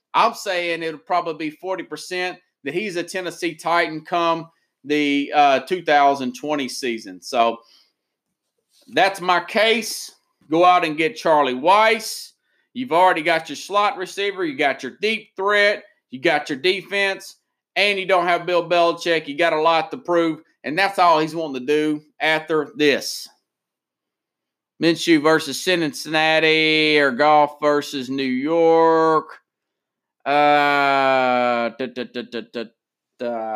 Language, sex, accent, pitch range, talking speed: English, male, American, 145-185 Hz, 125 wpm